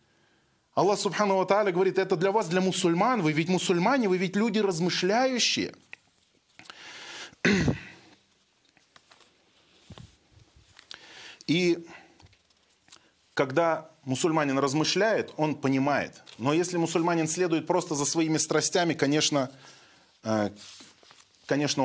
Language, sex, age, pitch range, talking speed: Russian, male, 30-49, 160-215 Hz, 80 wpm